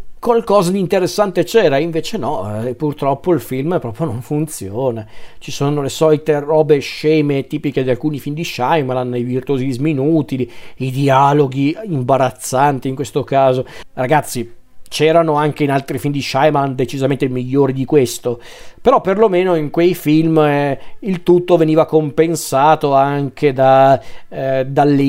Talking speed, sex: 145 wpm, male